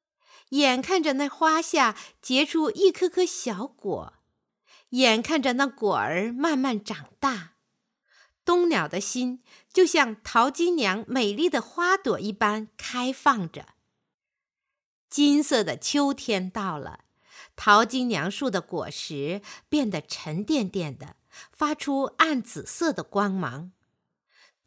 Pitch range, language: 205-295 Hz, Chinese